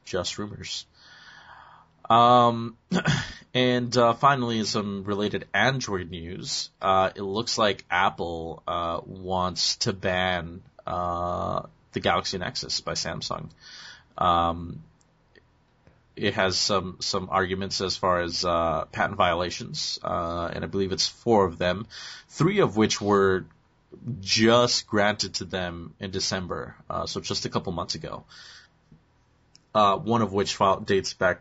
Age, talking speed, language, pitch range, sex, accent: 30-49, 130 wpm, English, 90-110 Hz, male, American